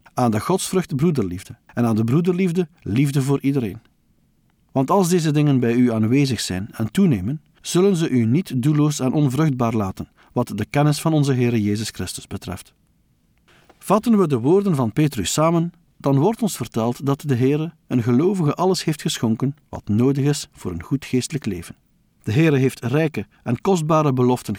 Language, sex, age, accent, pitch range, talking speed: Dutch, male, 50-69, Dutch, 120-160 Hz, 175 wpm